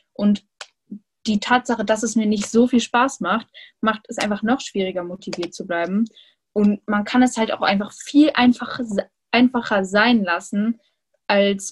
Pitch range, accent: 185-230 Hz, German